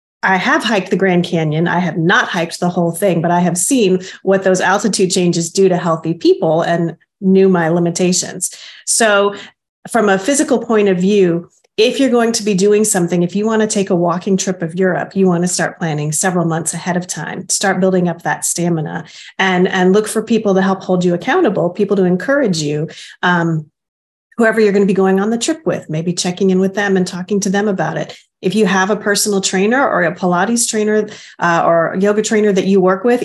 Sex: female